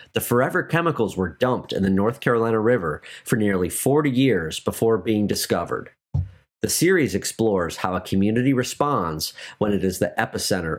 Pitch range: 95-125 Hz